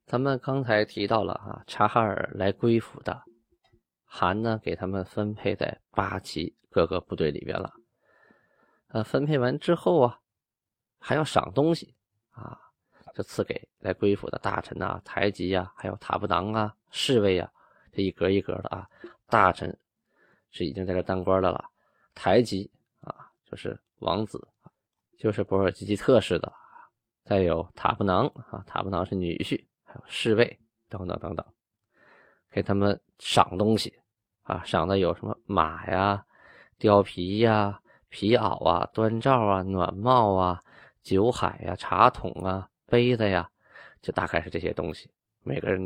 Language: Chinese